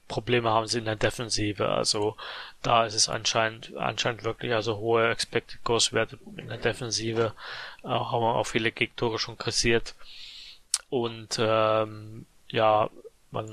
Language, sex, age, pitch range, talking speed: German, male, 20-39, 110-120 Hz, 145 wpm